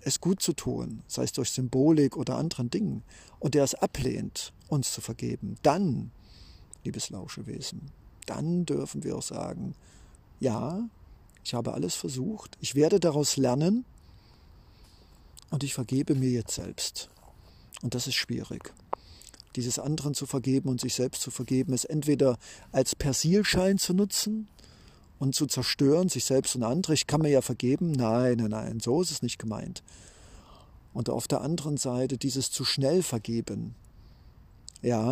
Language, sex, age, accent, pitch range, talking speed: German, male, 50-69, German, 120-150 Hz, 155 wpm